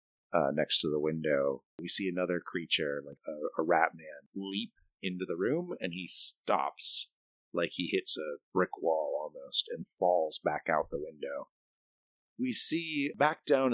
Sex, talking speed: male, 165 wpm